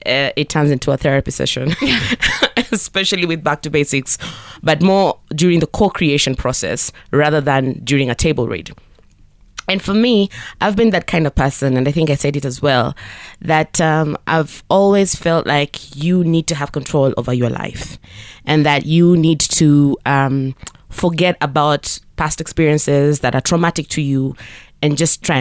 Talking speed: 170 wpm